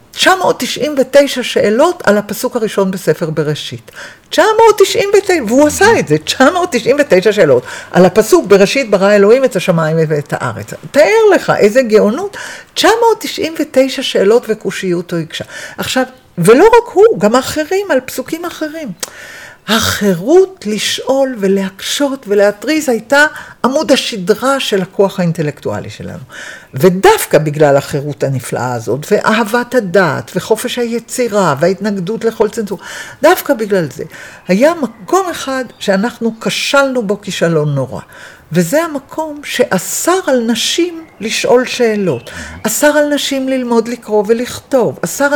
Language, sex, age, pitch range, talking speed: Hebrew, female, 50-69, 190-275 Hz, 115 wpm